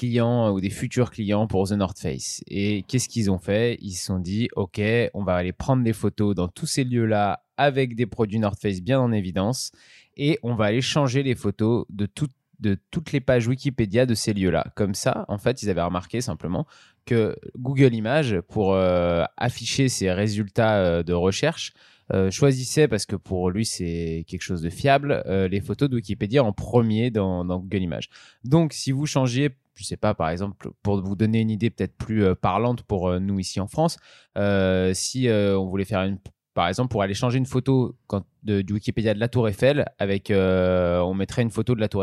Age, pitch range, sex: 20-39, 95-125 Hz, male